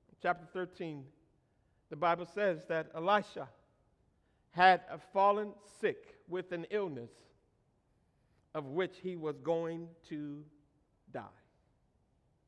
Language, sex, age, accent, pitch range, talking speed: English, male, 50-69, American, 175-255 Hz, 100 wpm